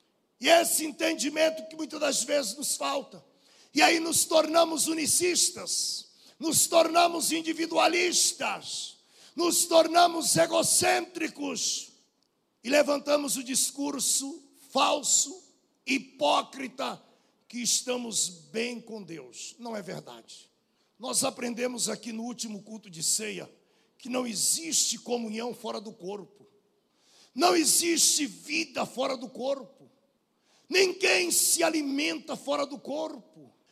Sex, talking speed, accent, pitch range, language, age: male, 110 wpm, Brazilian, 255-330 Hz, Portuguese, 60-79